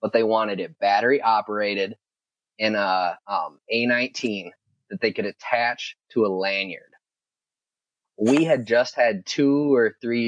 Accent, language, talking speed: American, English, 140 wpm